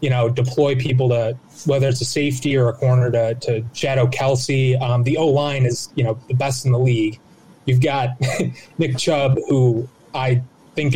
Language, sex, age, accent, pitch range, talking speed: English, male, 20-39, American, 120-135 Hz, 190 wpm